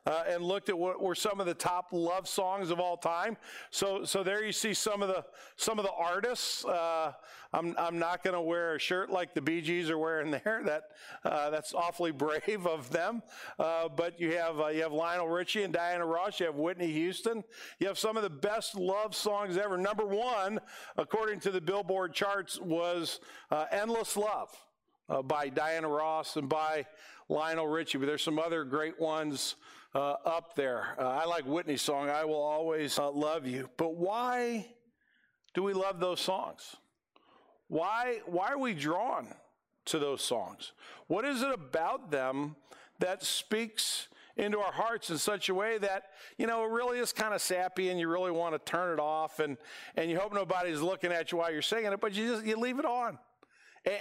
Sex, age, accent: male, 50-69, American